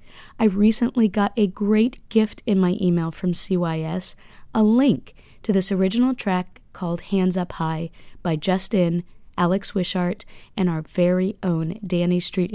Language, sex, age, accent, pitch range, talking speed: English, female, 30-49, American, 170-205 Hz, 150 wpm